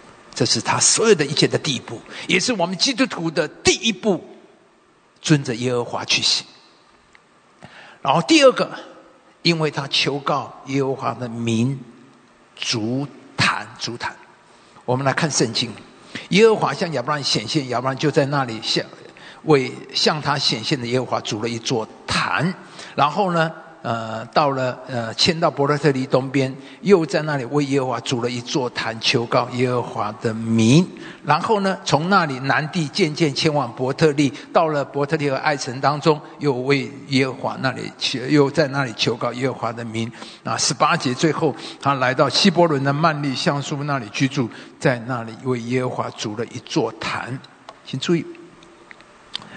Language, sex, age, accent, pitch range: English, male, 50-69, Chinese, 125-160 Hz